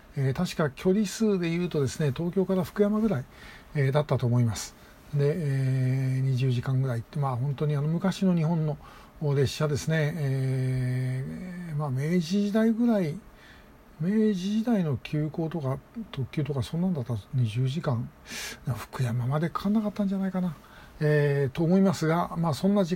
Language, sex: Japanese, male